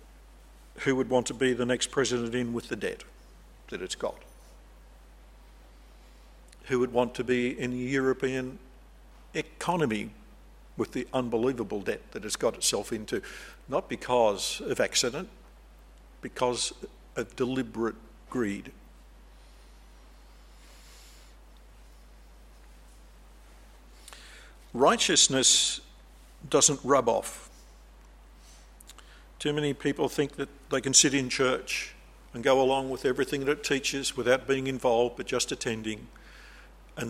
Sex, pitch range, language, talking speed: male, 115-140 Hz, English, 110 wpm